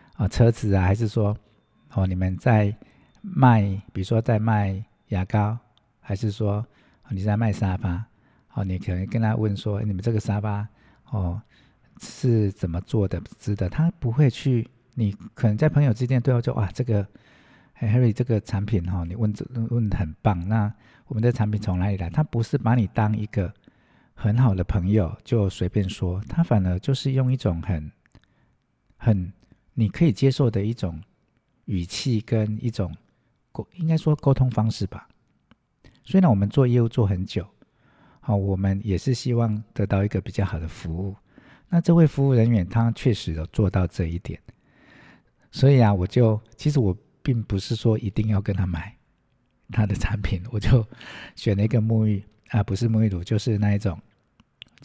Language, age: Chinese, 50-69